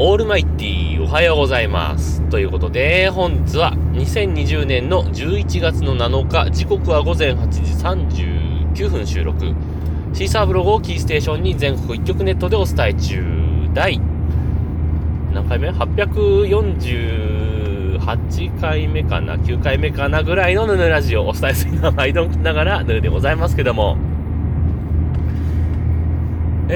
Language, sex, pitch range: Japanese, male, 75-85 Hz